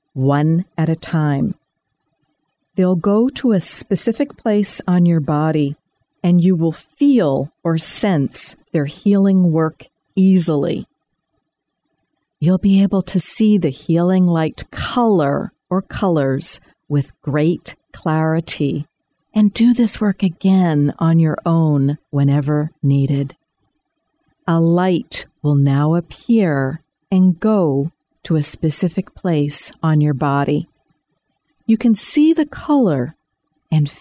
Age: 50-69